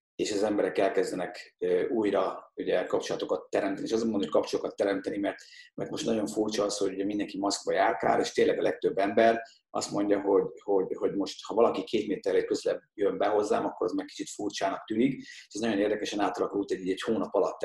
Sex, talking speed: male, 195 wpm